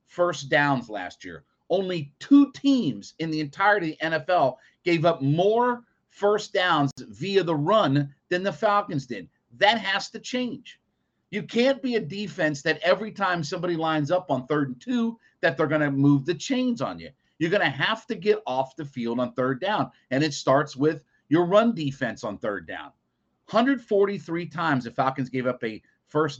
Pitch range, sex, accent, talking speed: 140-215 Hz, male, American, 185 wpm